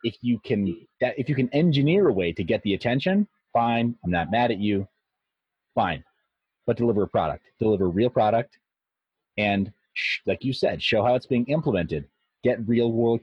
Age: 30-49